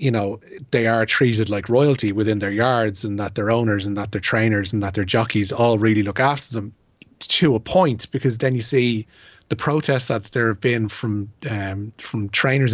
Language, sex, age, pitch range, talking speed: English, male, 30-49, 105-125 Hz, 205 wpm